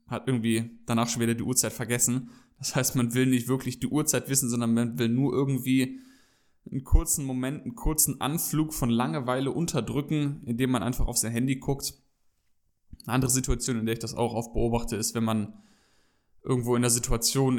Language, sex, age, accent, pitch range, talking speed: German, male, 20-39, German, 120-135 Hz, 190 wpm